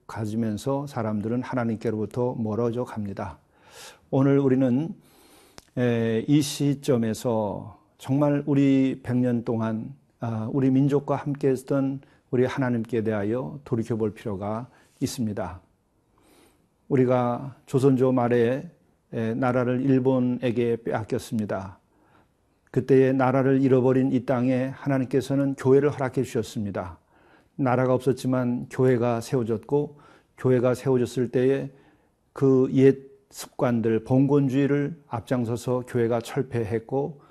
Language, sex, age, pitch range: Korean, male, 40-59, 115-135 Hz